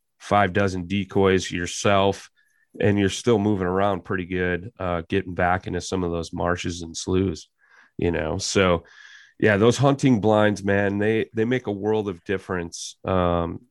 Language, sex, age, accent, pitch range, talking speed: English, male, 30-49, American, 90-105 Hz, 160 wpm